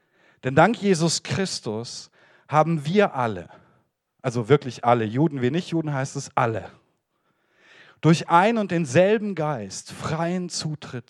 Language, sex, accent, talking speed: German, male, German, 130 wpm